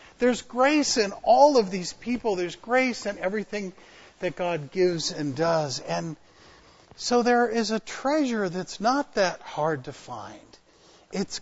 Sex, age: male, 50-69